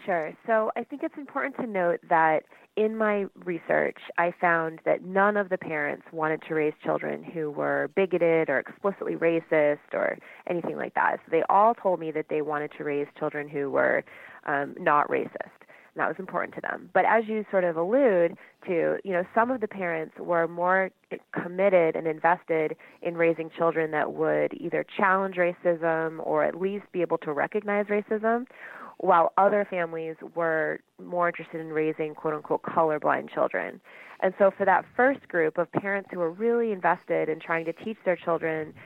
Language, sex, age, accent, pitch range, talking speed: English, female, 30-49, American, 160-190 Hz, 180 wpm